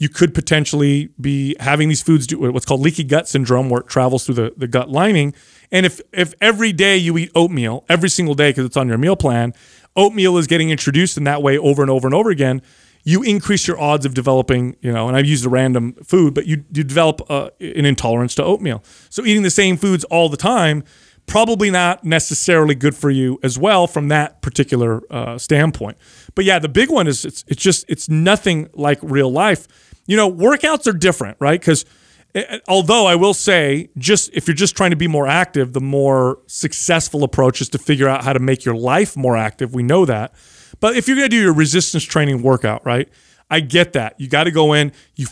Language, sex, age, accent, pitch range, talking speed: English, male, 30-49, American, 135-180 Hz, 220 wpm